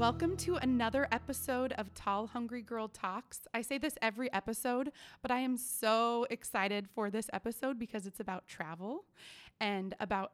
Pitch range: 190-230 Hz